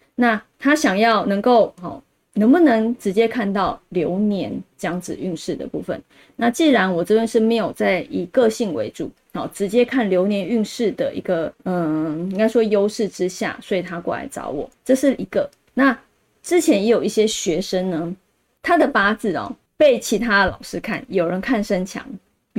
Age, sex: 20-39, female